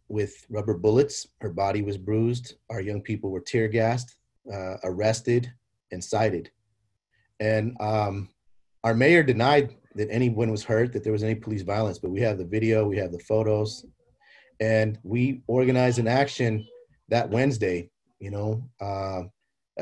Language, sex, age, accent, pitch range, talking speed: English, male, 30-49, American, 105-120 Hz, 155 wpm